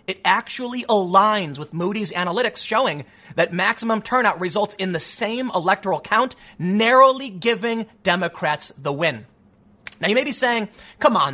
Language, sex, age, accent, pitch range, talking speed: English, male, 30-49, American, 155-230 Hz, 150 wpm